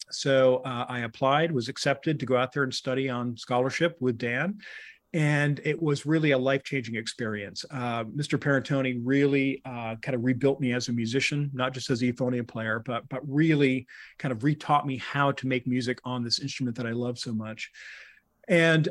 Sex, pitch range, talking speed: male, 125-150 Hz, 195 wpm